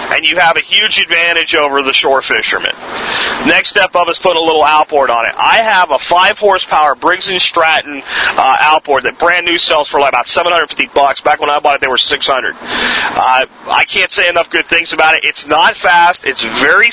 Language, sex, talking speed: English, male, 225 wpm